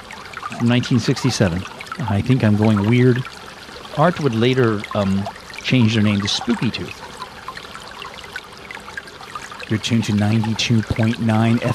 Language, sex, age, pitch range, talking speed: English, male, 40-59, 105-135 Hz, 105 wpm